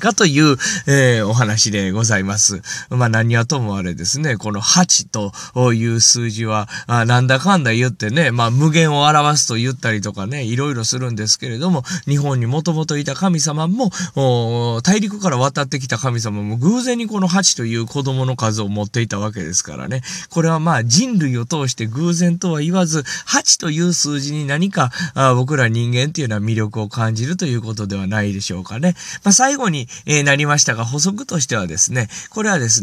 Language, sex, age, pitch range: Japanese, male, 20-39, 115-175 Hz